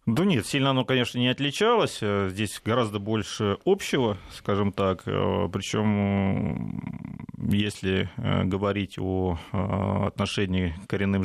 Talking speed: 105 wpm